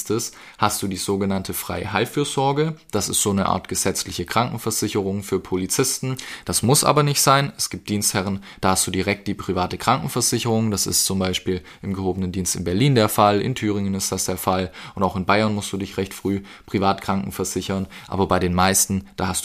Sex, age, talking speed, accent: male, 20-39, 195 wpm, German